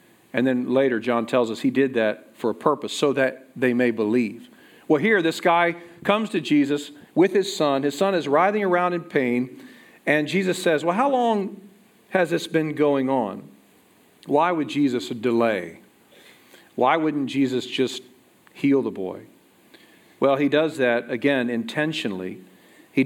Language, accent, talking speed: English, American, 165 wpm